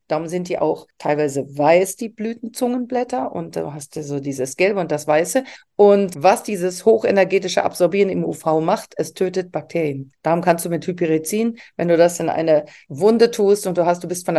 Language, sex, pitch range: German, female, 160-210 Hz